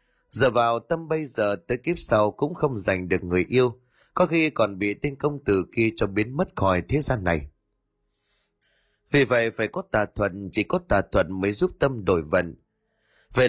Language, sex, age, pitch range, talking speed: Vietnamese, male, 20-39, 95-130 Hz, 200 wpm